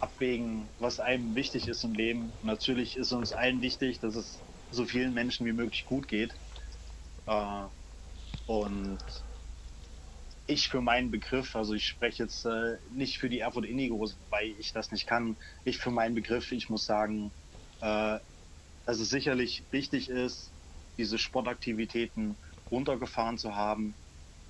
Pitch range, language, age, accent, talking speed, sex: 90-115 Hz, German, 30-49, German, 140 wpm, male